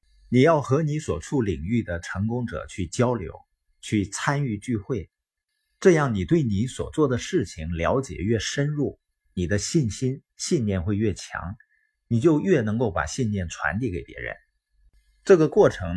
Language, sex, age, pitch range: Chinese, male, 50-69, 95-145 Hz